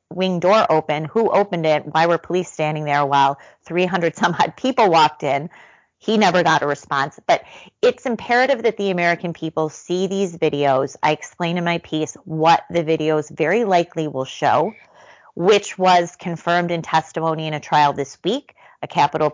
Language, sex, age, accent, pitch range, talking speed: English, female, 30-49, American, 150-185 Hz, 170 wpm